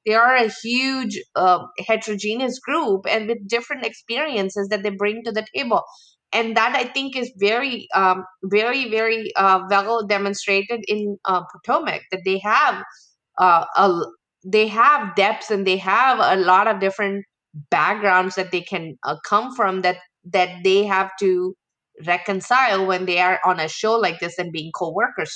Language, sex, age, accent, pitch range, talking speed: English, female, 20-39, Indian, 180-230 Hz, 170 wpm